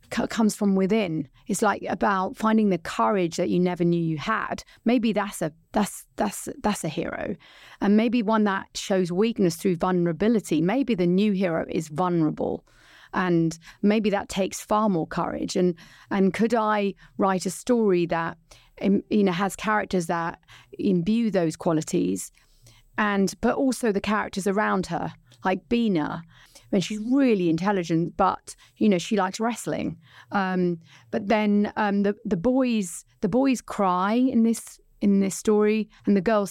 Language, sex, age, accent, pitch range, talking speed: English, female, 30-49, British, 170-215 Hz, 160 wpm